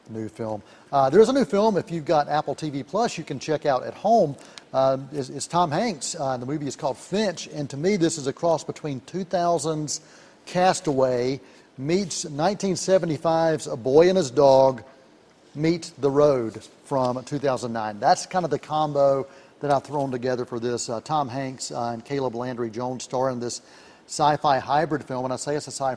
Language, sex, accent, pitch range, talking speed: English, male, American, 125-155 Hz, 190 wpm